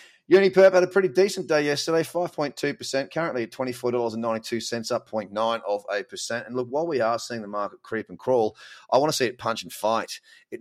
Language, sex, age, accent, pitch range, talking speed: English, male, 30-49, Australian, 105-145 Hz, 205 wpm